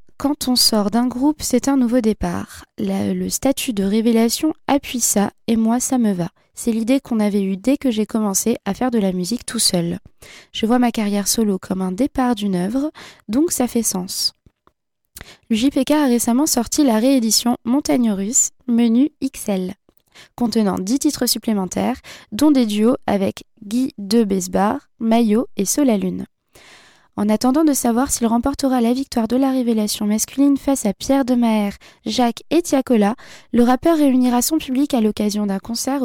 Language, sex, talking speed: French, female, 175 wpm